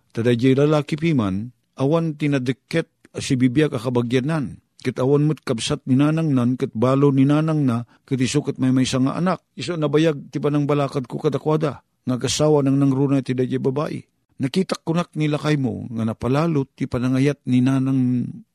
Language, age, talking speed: Filipino, 50-69, 150 wpm